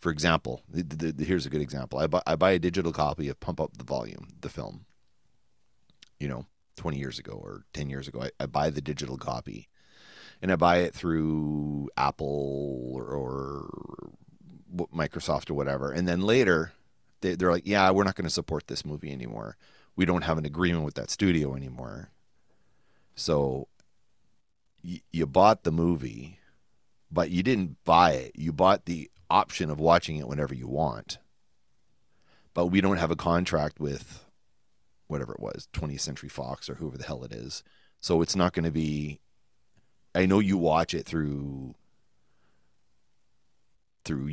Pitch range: 70-85 Hz